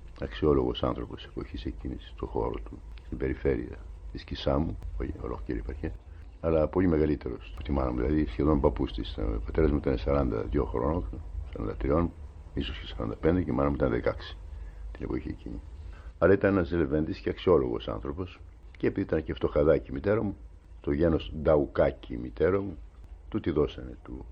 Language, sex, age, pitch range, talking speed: Greek, male, 60-79, 75-85 Hz, 160 wpm